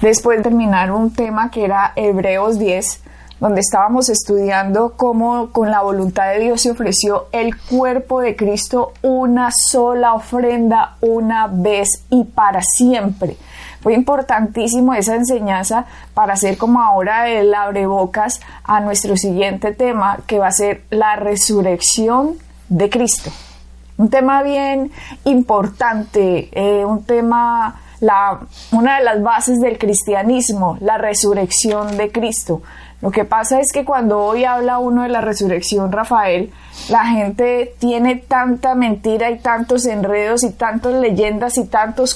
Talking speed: 140 wpm